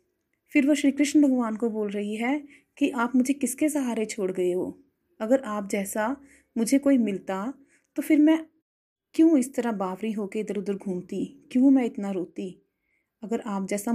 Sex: female